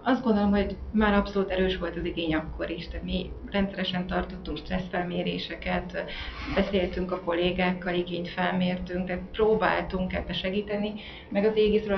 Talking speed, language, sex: 140 wpm, Hungarian, female